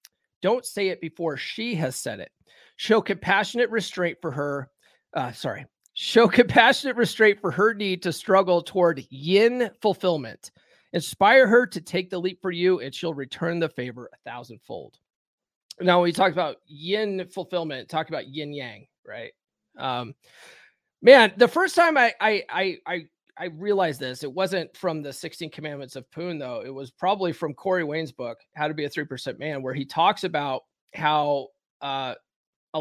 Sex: male